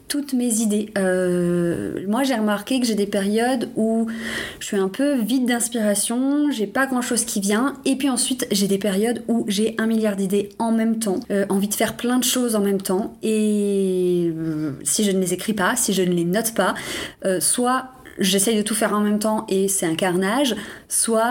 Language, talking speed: French, 215 wpm